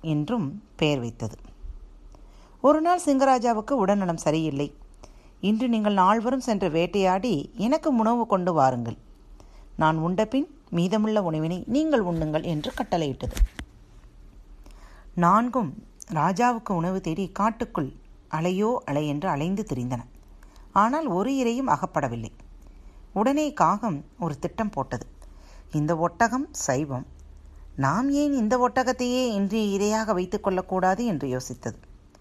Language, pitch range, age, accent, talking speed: Tamil, 150-230 Hz, 40-59, native, 105 wpm